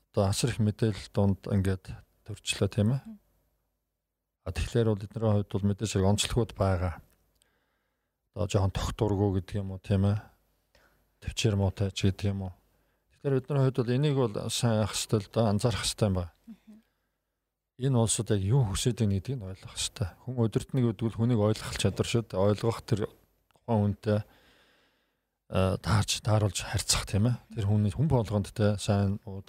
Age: 50-69